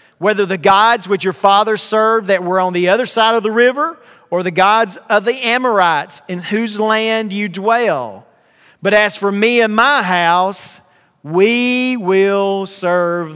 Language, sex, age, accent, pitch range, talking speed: English, male, 40-59, American, 185-225 Hz, 165 wpm